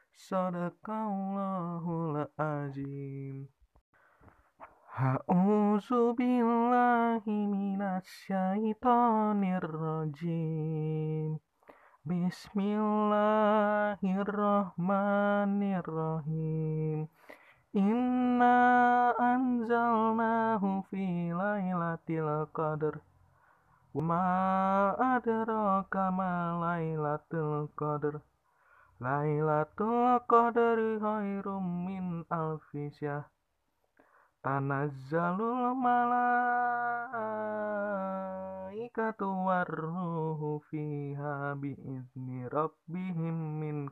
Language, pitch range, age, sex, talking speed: Indonesian, 150-215 Hz, 30-49, male, 30 wpm